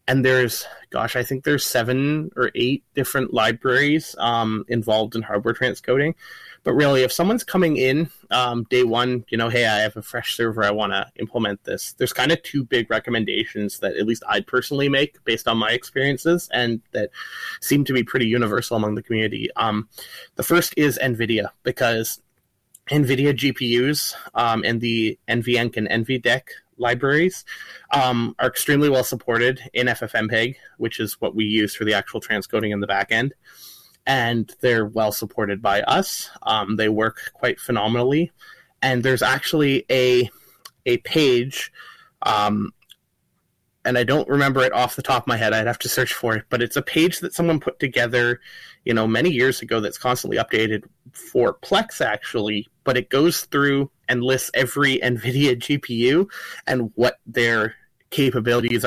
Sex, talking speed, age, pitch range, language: male, 170 wpm, 20-39, 115-130 Hz, English